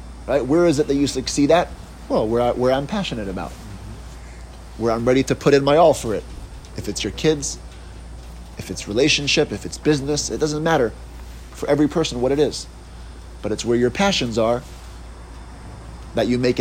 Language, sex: English, male